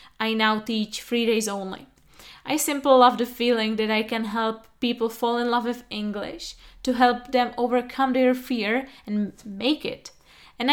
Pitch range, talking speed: 215-250 Hz, 175 wpm